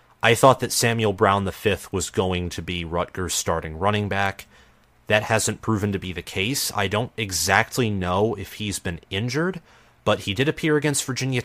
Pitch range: 85-110 Hz